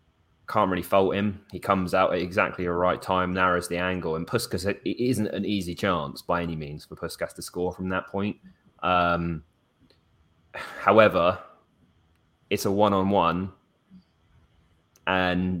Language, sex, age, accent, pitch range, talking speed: English, male, 20-39, British, 85-95 Hz, 145 wpm